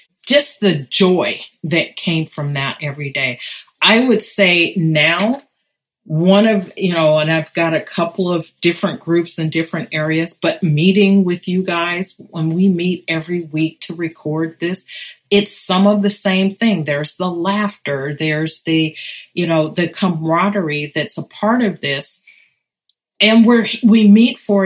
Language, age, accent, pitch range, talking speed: English, 40-59, American, 160-205 Hz, 160 wpm